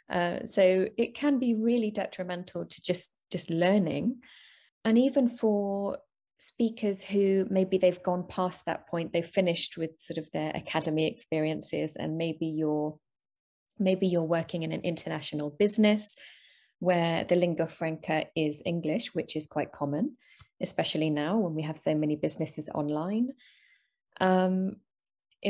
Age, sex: 20-39, female